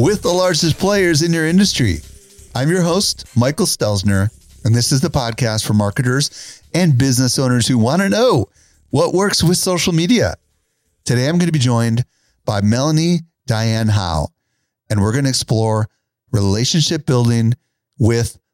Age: 40-59